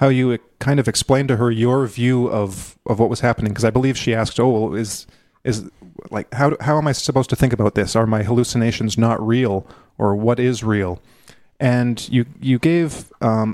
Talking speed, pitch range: 210 wpm, 110-135 Hz